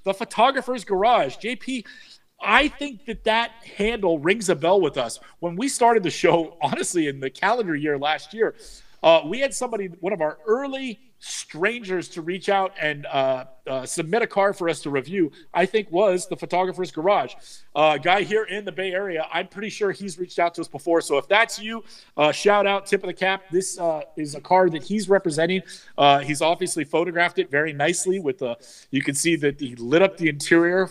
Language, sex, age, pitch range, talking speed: English, male, 40-59, 155-205 Hz, 210 wpm